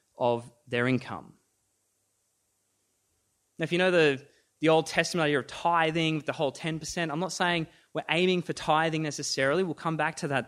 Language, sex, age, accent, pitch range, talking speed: English, male, 20-39, Australian, 120-175 Hz, 180 wpm